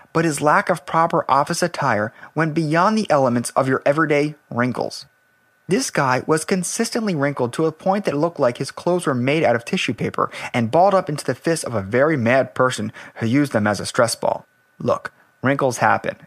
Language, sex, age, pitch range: English, male, 30-49, 120-165 Hz